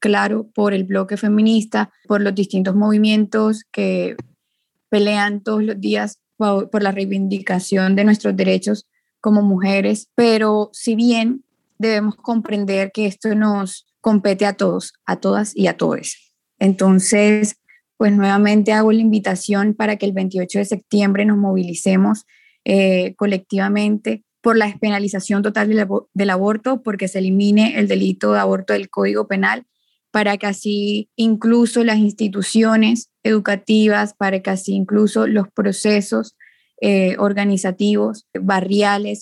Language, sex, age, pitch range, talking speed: Spanish, female, 20-39, 195-220 Hz, 130 wpm